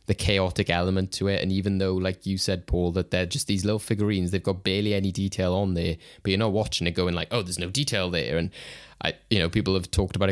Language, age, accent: English, 20-39, British